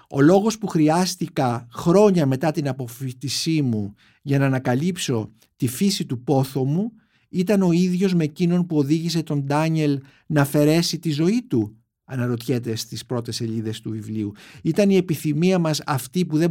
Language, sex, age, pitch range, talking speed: Greek, male, 50-69, 130-180 Hz, 160 wpm